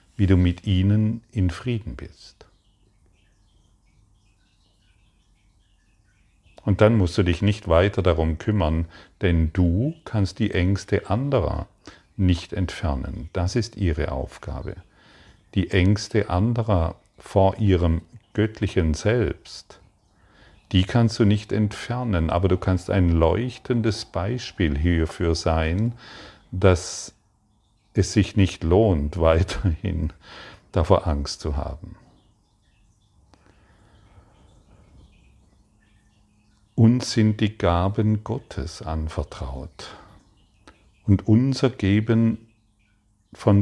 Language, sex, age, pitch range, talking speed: German, male, 40-59, 90-105 Hz, 95 wpm